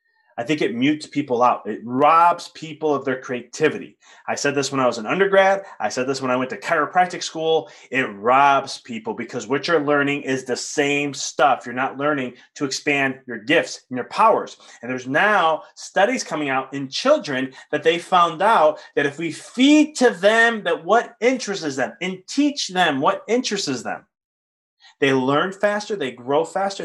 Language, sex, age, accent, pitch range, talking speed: English, male, 30-49, American, 140-190 Hz, 190 wpm